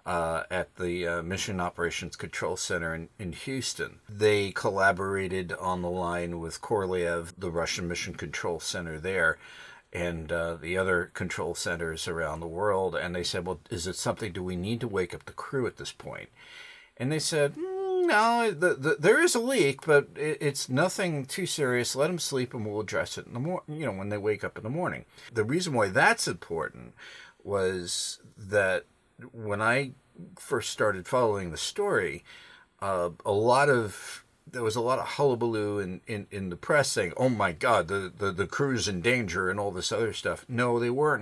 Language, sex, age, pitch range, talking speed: English, male, 50-69, 95-145 Hz, 195 wpm